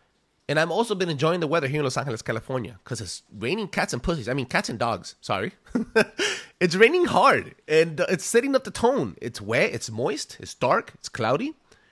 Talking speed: 205 wpm